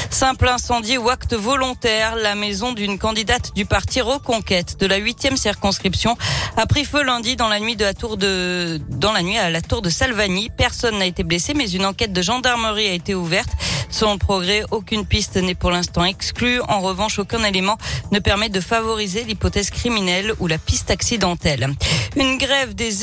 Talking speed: 190 wpm